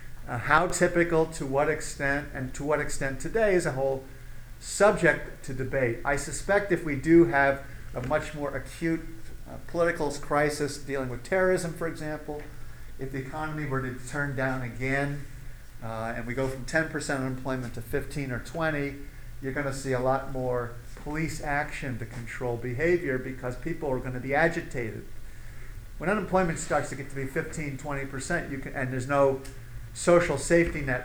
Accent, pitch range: American, 120-150 Hz